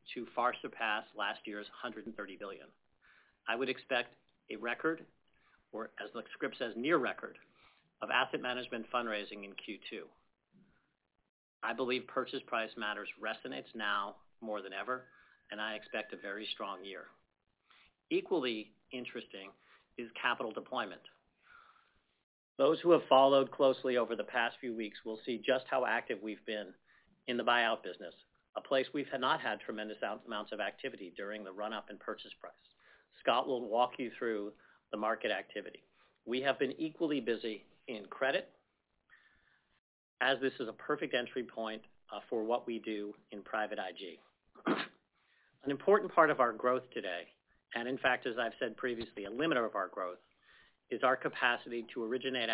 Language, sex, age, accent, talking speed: English, male, 40-59, American, 155 wpm